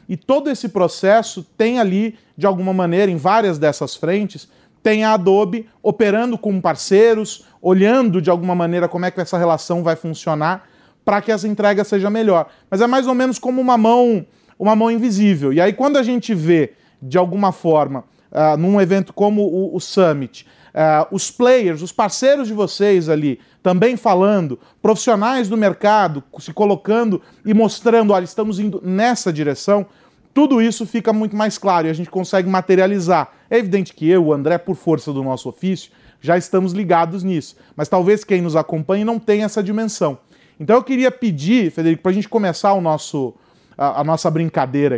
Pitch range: 165-220 Hz